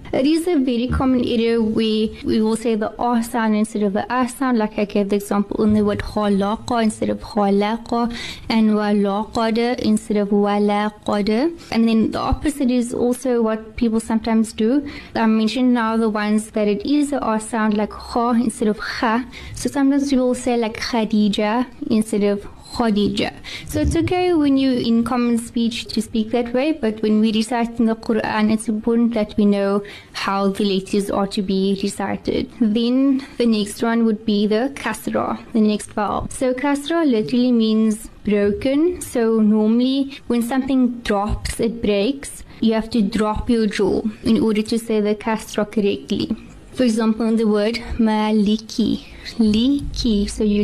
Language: English